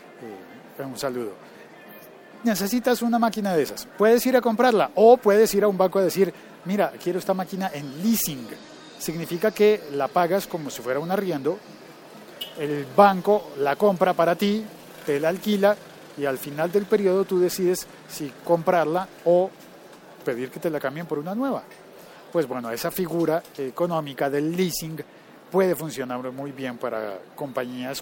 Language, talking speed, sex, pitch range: Spanish, 160 wpm, male, 145-205 Hz